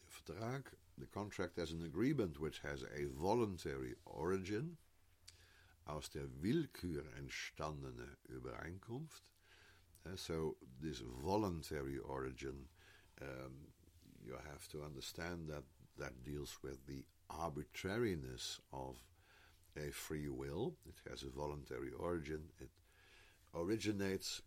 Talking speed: 105 wpm